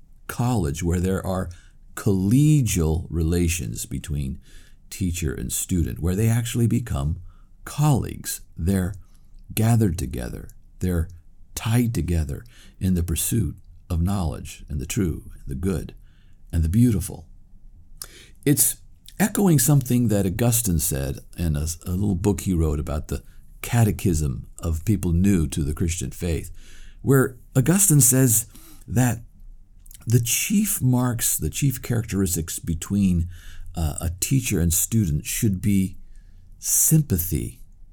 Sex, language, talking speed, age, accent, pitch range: male, English, 120 wpm, 50-69, American, 85-115 Hz